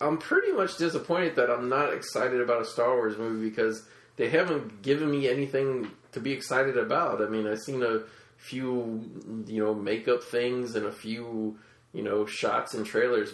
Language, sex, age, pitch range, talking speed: English, male, 20-39, 115-150 Hz, 185 wpm